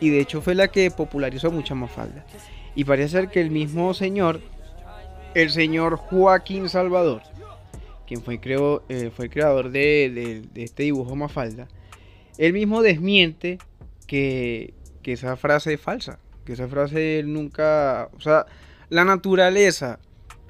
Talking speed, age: 150 wpm, 20-39